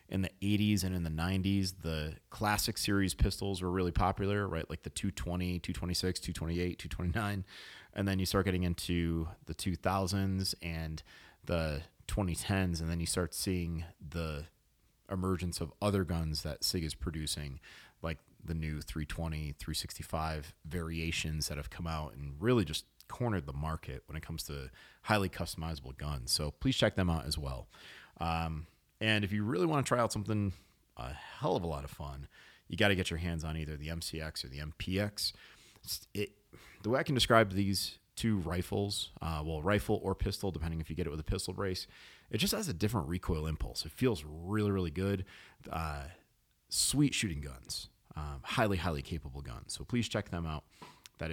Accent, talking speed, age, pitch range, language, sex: American, 180 wpm, 30-49, 80-100 Hz, English, male